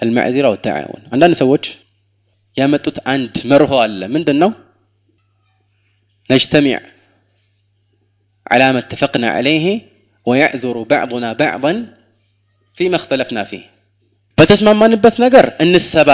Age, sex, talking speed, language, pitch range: 20-39, male, 90 wpm, Amharic, 100-155 Hz